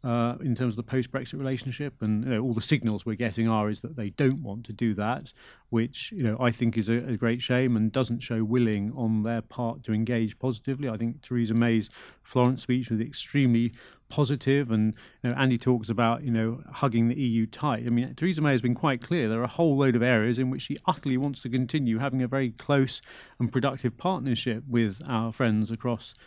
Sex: male